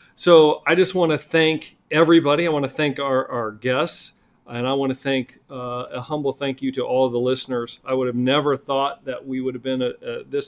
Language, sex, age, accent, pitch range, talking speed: English, male, 40-59, American, 130-150 Hz, 240 wpm